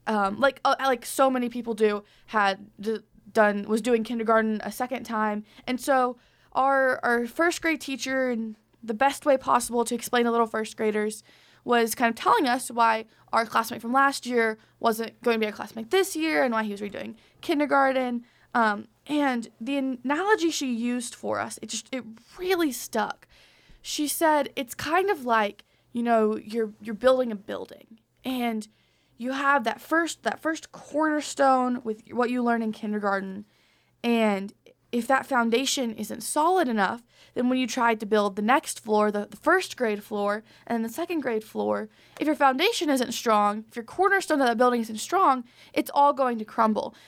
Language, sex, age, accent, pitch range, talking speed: English, female, 20-39, American, 220-275 Hz, 185 wpm